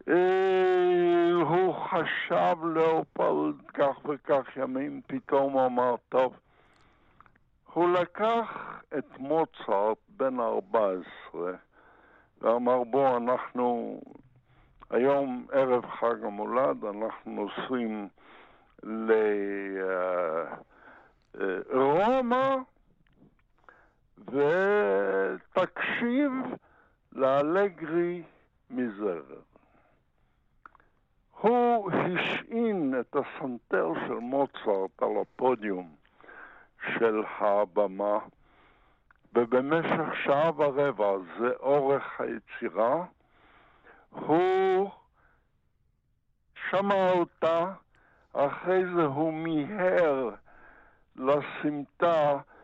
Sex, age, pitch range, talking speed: male, 60-79, 120-180 Hz, 60 wpm